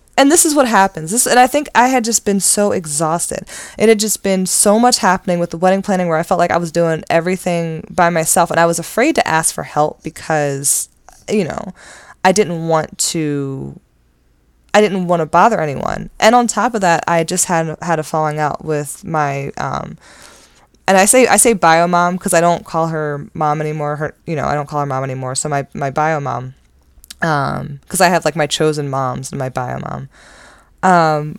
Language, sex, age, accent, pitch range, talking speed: English, female, 20-39, American, 150-180 Hz, 215 wpm